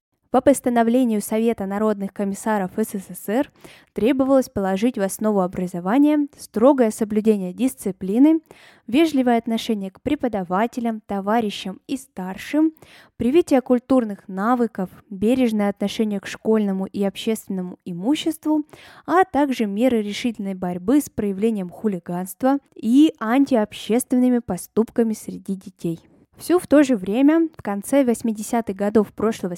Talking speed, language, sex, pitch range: 110 wpm, Russian, female, 195-260 Hz